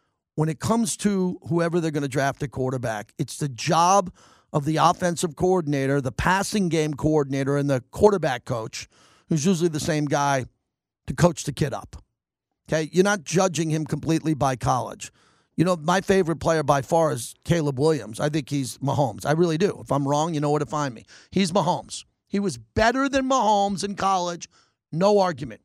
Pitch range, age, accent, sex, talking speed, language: 150-205 Hz, 40-59, American, male, 190 wpm, English